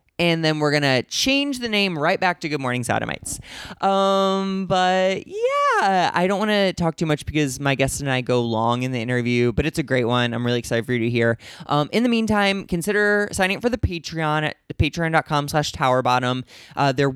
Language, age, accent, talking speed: English, 20-39, American, 215 wpm